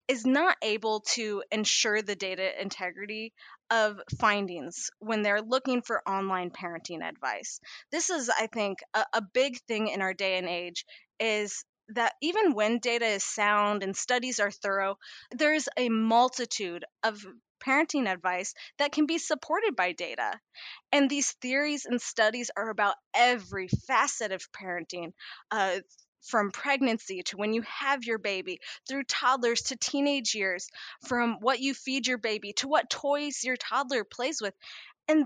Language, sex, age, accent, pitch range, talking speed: English, female, 20-39, American, 205-255 Hz, 155 wpm